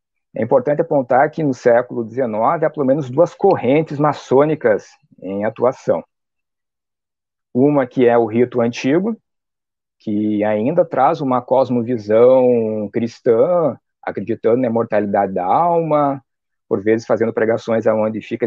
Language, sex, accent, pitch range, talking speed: Portuguese, male, Brazilian, 105-140 Hz, 125 wpm